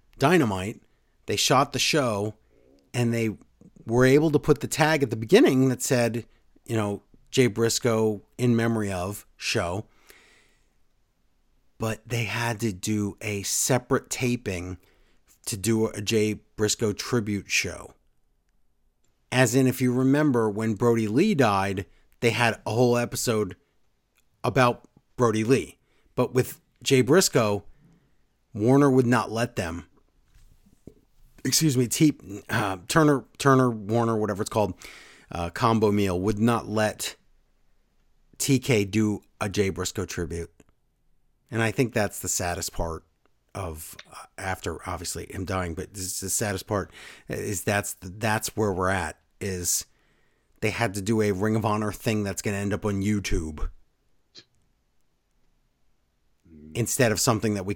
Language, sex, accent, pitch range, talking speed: English, male, American, 95-120 Hz, 140 wpm